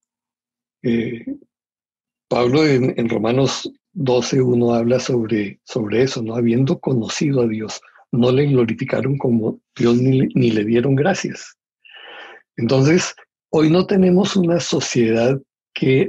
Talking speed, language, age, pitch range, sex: 125 wpm, English, 60-79, 120-165 Hz, male